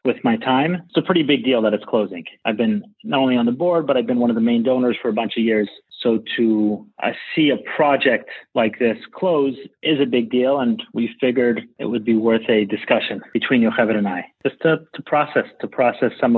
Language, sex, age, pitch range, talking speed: English, male, 30-49, 115-140 Hz, 235 wpm